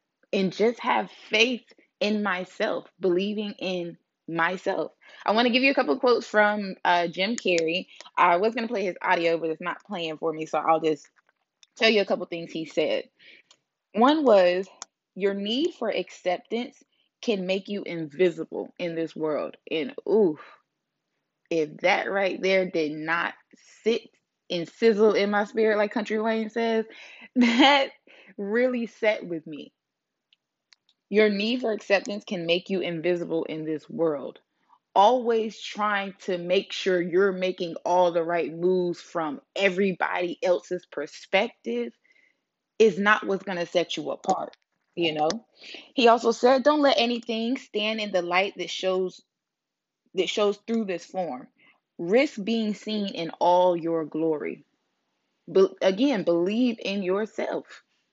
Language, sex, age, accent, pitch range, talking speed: English, female, 20-39, American, 175-230 Hz, 150 wpm